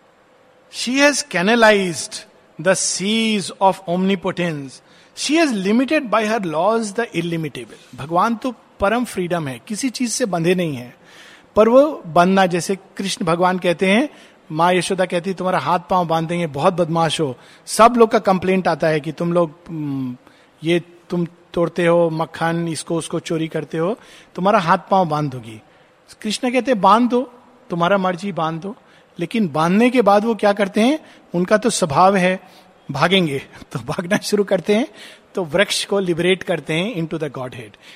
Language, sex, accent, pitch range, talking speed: Hindi, male, native, 170-225 Hz, 170 wpm